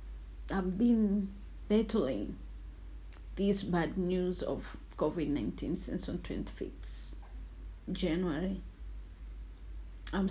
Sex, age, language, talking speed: female, 40-59, Swahili, 75 wpm